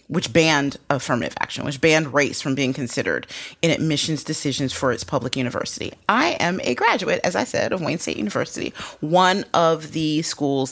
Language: English